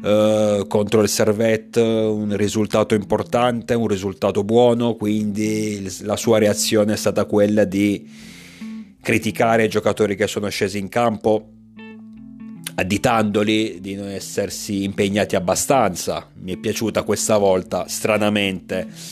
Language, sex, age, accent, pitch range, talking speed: Italian, male, 30-49, native, 100-115 Hz, 115 wpm